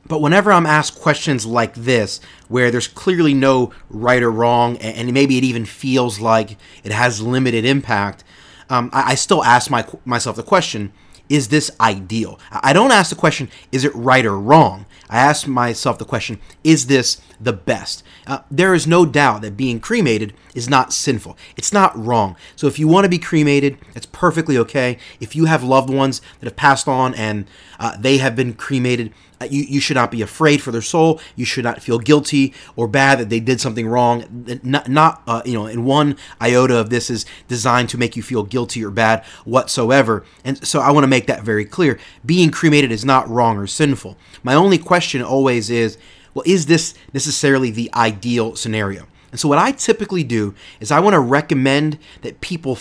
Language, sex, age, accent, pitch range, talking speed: English, male, 30-49, American, 115-145 Hz, 200 wpm